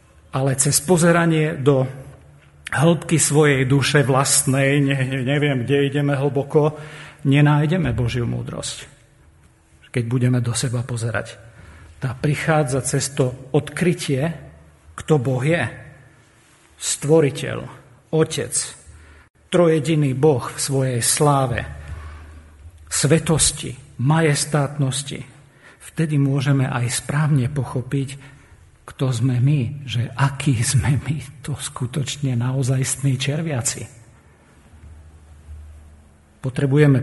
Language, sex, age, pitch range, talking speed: Slovak, male, 50-69, 115-145 Hz, 90 wpm